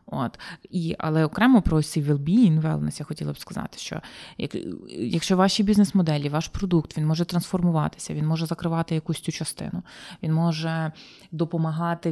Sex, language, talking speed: female, Ukrainian, 155 wpm